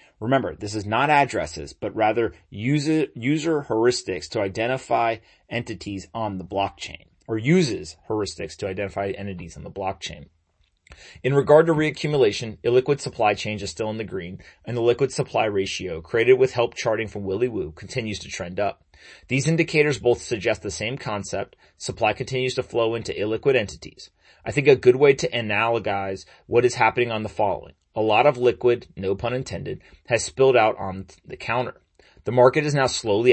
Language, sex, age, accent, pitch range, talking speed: English, male, 30-49, American, 100-130 Hz, 175 wpm